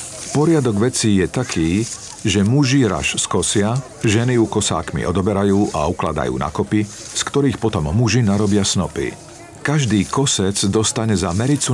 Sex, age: male, 50-69